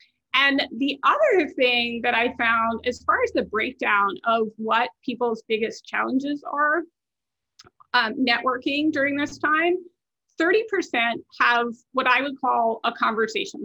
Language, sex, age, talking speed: English, female, 30-49, 135 wpm